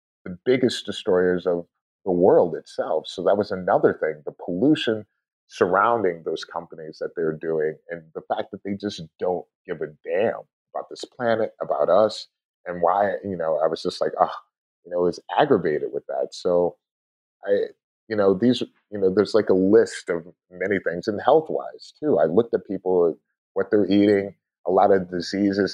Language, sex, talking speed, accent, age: English, male, 185 wpm, American, 30-49